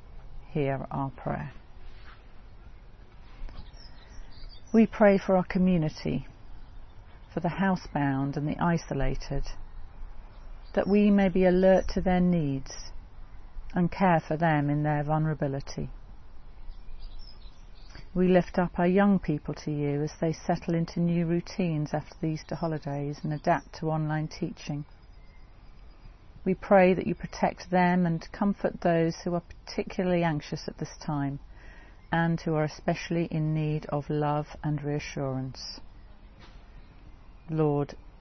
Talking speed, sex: 125 wpm, female